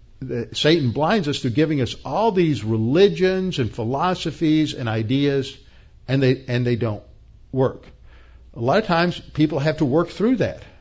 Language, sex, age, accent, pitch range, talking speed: English, male, 50-69, American, 120-160 Hz, 160 wpm